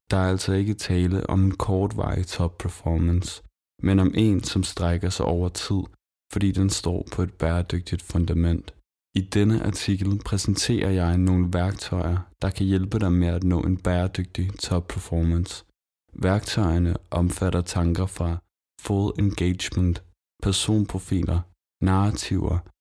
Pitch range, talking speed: 85-95 Hz, 135 wpm